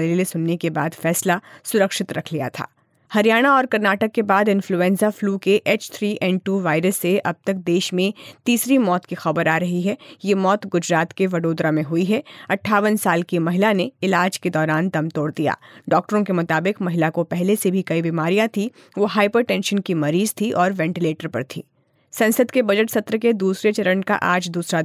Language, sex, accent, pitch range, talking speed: Hindi, female, native, 165-205 Hz, 190 wpm